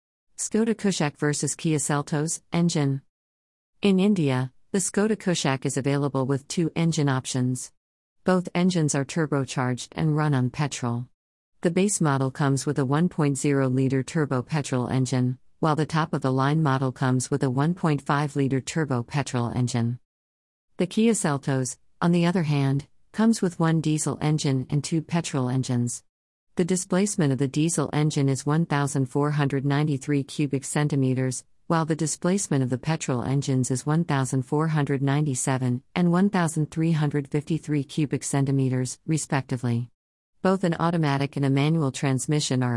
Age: 50-69